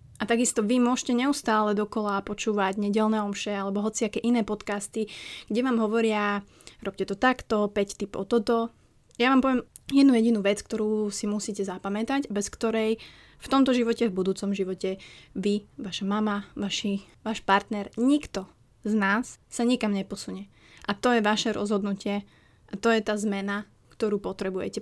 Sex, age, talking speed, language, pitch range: female, 20-39, 155 wpm, Slovak, 200-230 Hz